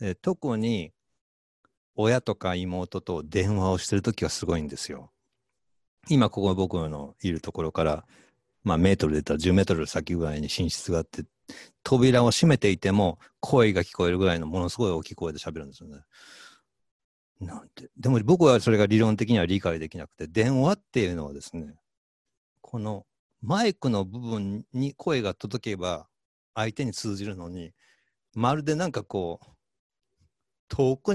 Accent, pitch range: native, 80-120 Hz